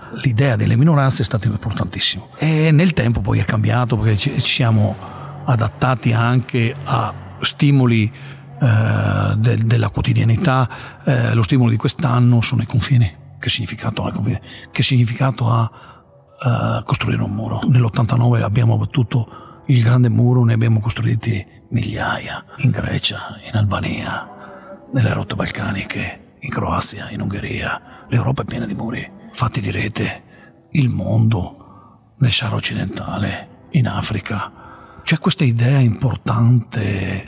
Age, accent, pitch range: 50-69, native, 110-130 Hz